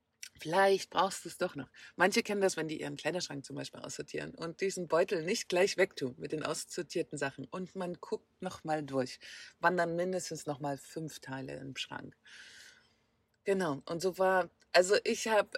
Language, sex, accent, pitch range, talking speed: German, female, German, 145-185 Hz, 185 wpm